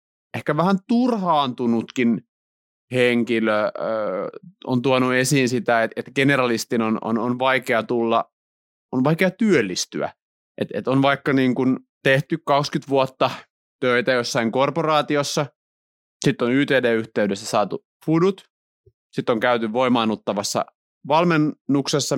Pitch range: 110-145 Hz